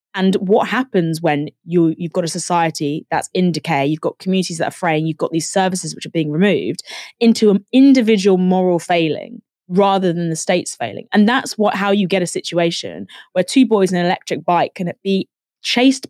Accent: British